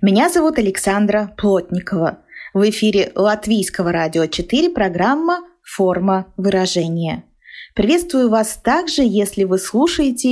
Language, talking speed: Russian, 115 wpm